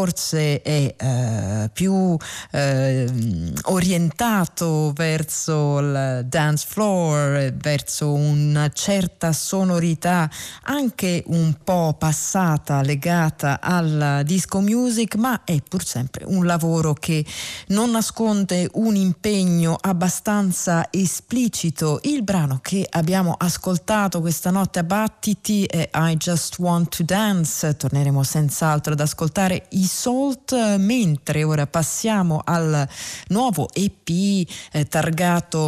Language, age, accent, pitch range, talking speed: Italian, 40-59, native, 150-185 Hz, 105 wpm